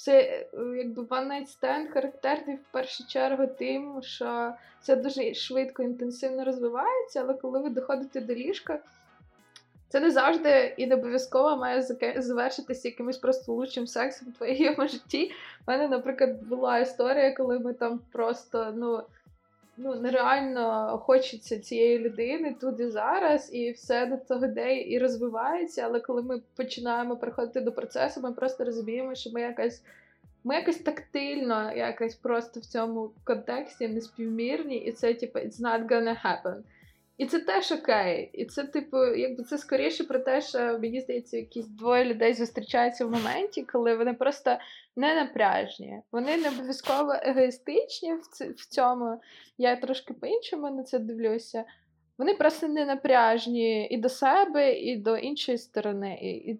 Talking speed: 145 wpm